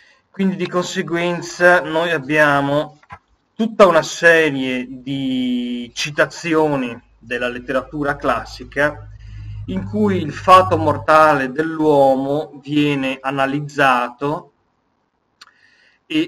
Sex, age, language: male, 30-49, Italian